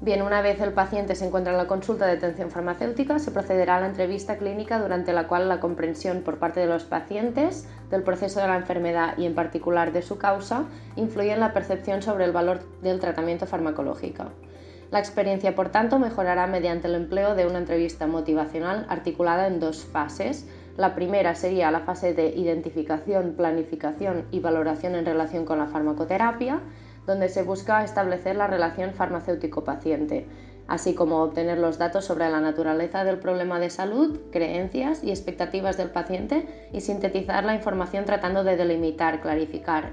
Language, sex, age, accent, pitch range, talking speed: English, female, 20-39, Spanish, 170-195 Hz, 170 wpm